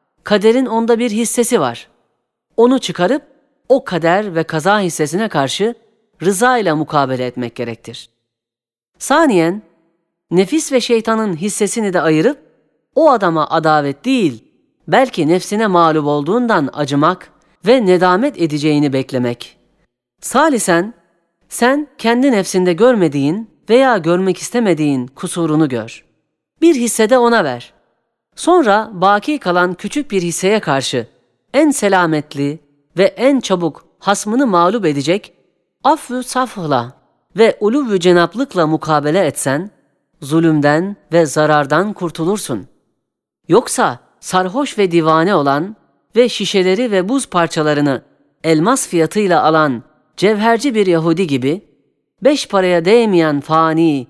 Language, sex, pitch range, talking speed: Turkish, female, 155-225 Hz, 110 wpm